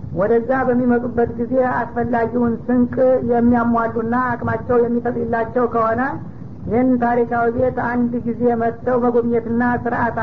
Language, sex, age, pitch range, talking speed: Amharic, female, 60-79, 230-245 Hz, 95 wpm